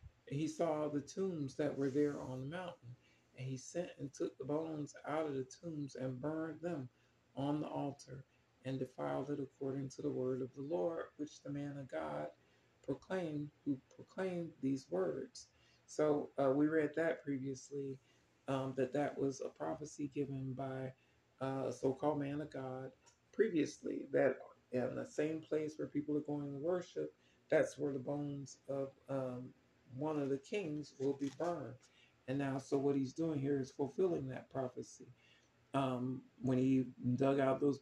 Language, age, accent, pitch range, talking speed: English, 40-59, American, 130-150 Hz, 175 wpm